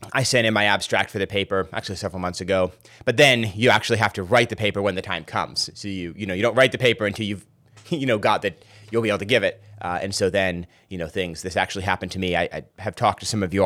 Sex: male